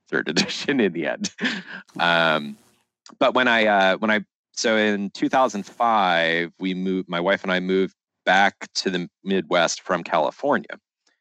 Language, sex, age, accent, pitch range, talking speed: English, male, 30-49, American, 80-100 Hz, 150 wpm